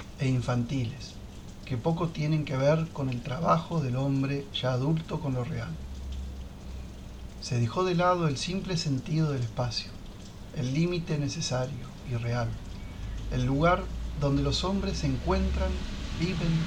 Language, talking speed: Spanish, 140 wpm